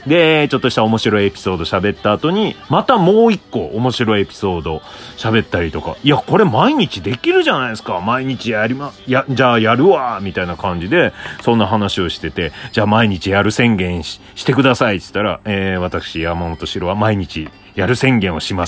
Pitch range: 100-130 Hz